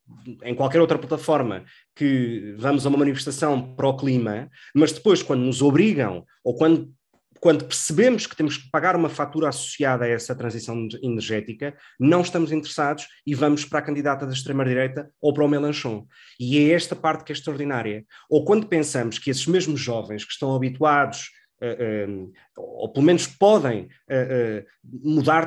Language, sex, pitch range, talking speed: Portuguese, male, 125-170 Hz, 160 wpm